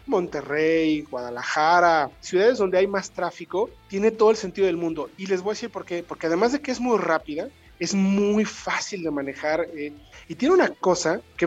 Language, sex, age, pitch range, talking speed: Spanish, male, 40-59, 170-210 Hz, 200 wpm